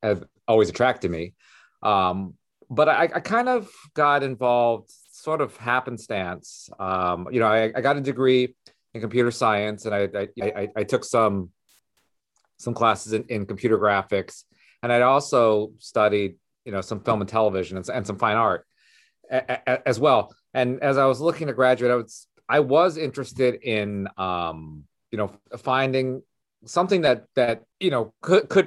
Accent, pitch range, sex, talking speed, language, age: American, 100-130 Hz, male, 175 wpm, English, 40-59